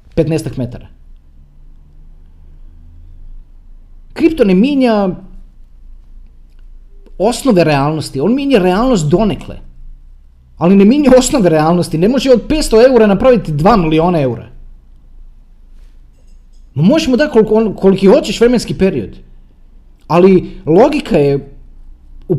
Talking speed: 100 wpm